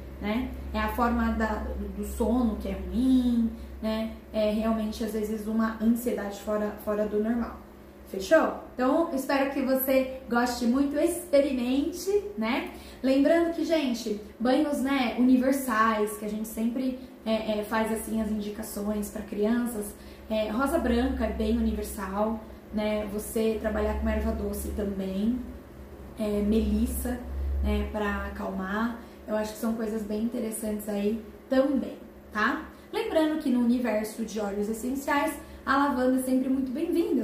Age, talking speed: 10-29, 145 wpm